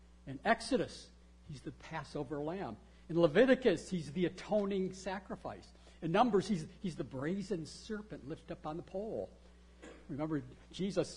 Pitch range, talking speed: 135-190 Hz, 140 wpm